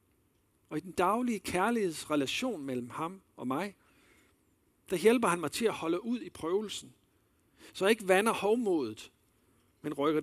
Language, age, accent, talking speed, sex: Danish, 60-79, native, 145 wpm, male